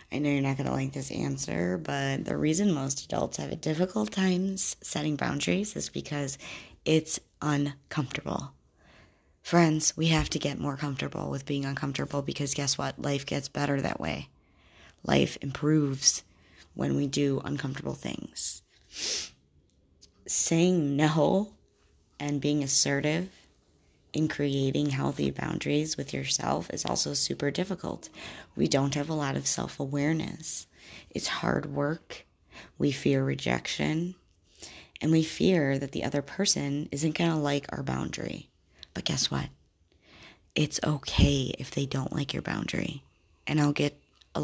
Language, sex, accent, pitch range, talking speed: English, female, American, 115-150 Hz, 140 wpm